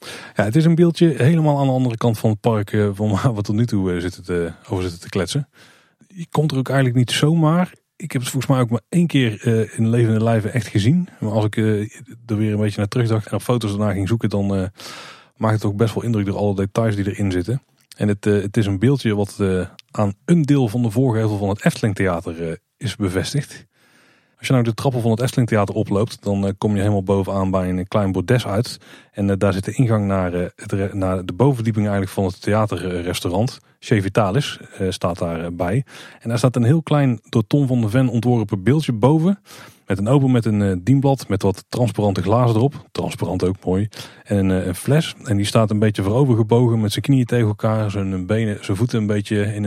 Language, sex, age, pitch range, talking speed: Dutch, male, 30-49, 100-125 Hz, 215 wpm